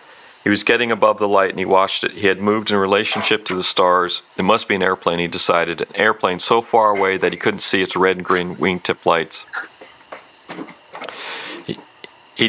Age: 40-59